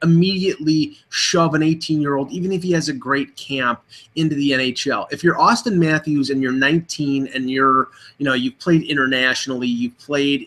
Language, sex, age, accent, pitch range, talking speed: English, male, 30-49, American, 125-155 Hz, 170 wpm